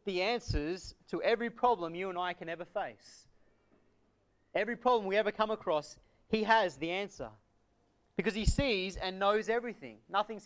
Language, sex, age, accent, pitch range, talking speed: English, male, 30-49, Australian, 140-210 Hz, 160 wpm